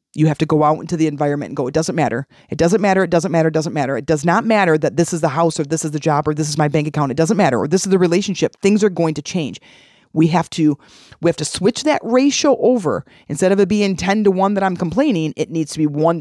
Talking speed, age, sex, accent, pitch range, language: 295 wpm, 30-49, female, American, 150-195 Hz, English